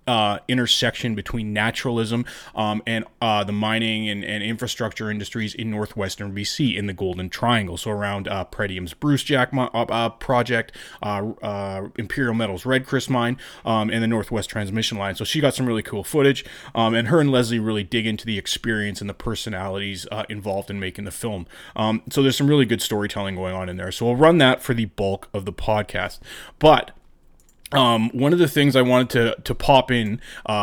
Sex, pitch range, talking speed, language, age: male, 105-130 Hz, 200 wpm, English, 30-49